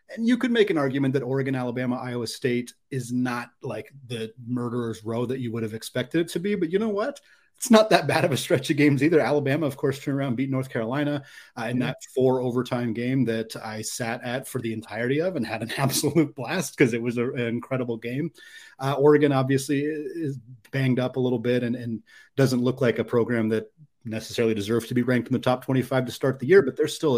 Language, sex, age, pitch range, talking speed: English, male, 30-49, 120-145 Hz, 235 wpm